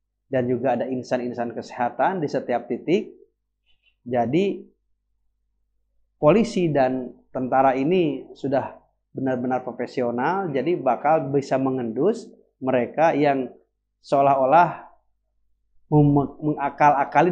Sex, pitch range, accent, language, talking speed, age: male, 120-145 Hz, native, Indonesian, 85 wpm, 30-49